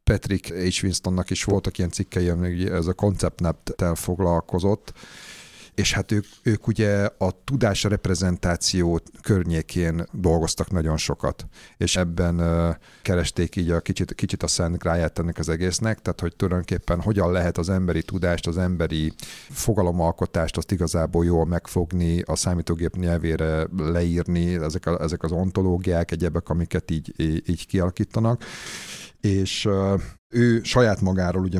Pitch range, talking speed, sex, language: 85-95 Hz, 140 wpm, male, Hungarian